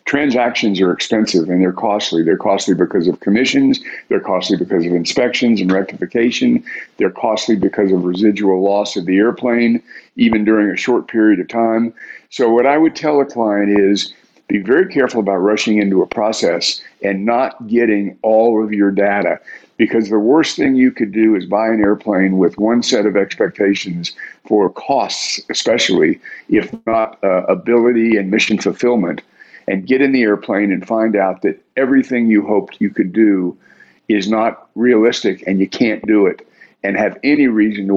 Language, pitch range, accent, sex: English, 100-115 Hz, American, male